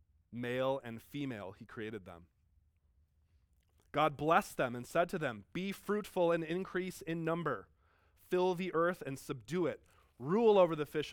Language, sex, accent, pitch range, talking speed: English, male, American, 105-170 Hz, 155 wpm